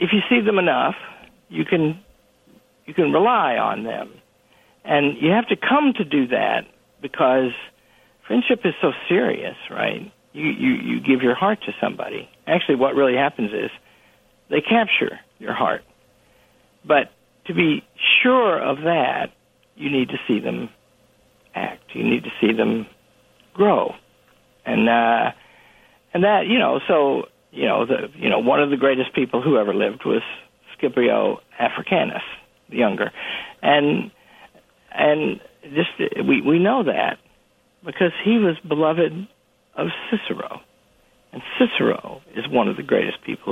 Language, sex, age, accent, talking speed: English, male, 60-79, American, 150 wpm